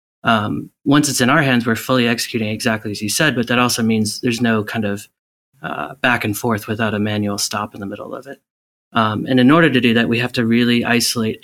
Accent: American